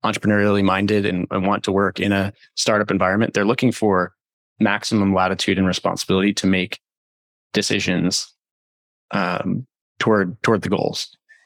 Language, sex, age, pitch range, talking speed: English, male, 20-39, 95-105 Hz, 135 wpm